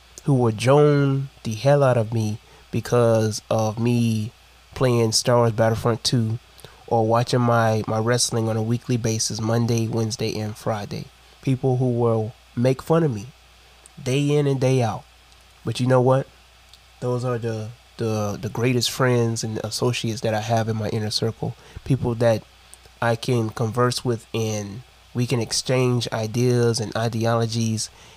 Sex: male